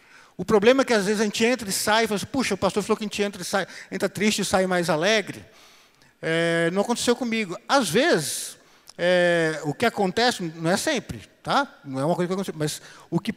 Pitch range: 165-215 Hz